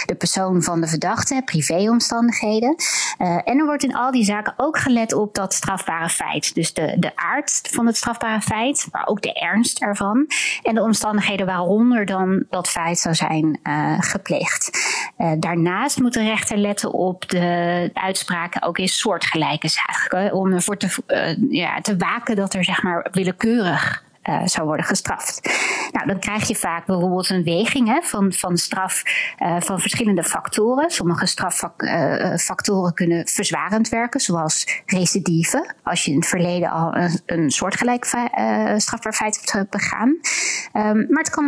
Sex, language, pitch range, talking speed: female, Dutch, 175-235 Hz, 160 wpm